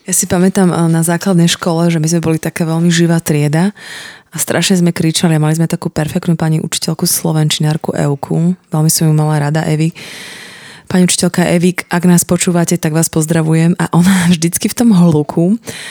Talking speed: 175 wpm